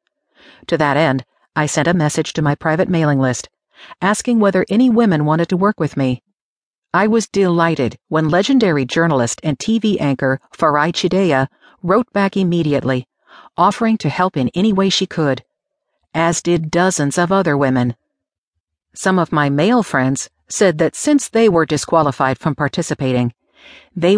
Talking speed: 155 wpm